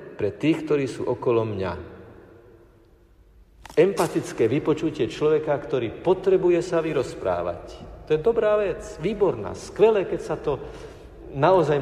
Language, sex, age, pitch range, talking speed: Slovak, male, 50-69, 110-165 Hz, 115 wpm